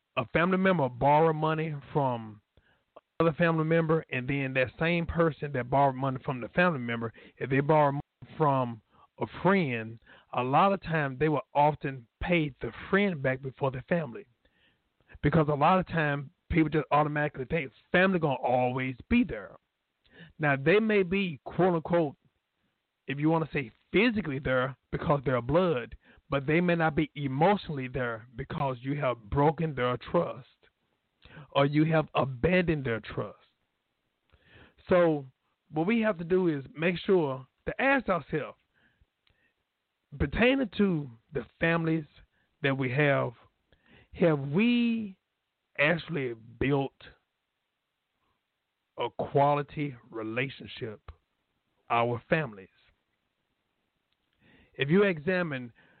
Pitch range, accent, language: 130-170 Hz, American, English